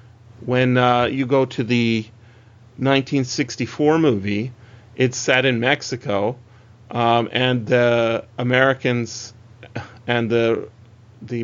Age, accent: 30-49, American